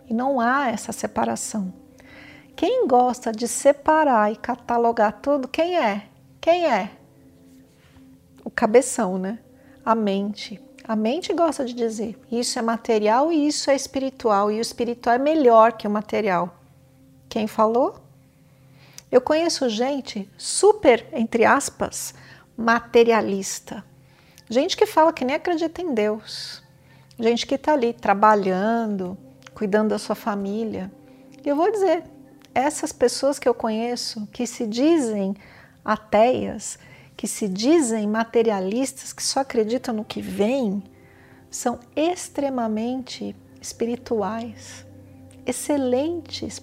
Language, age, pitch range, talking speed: Portuguese, 50-69, 210-265 Hz, 120 wpm